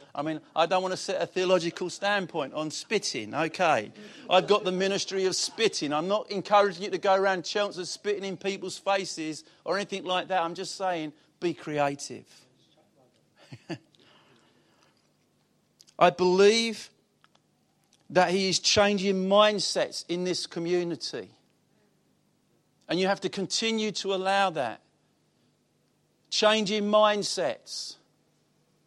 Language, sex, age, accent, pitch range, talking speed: English, male, 50-69, British, 155-195 Hz, 125 wpm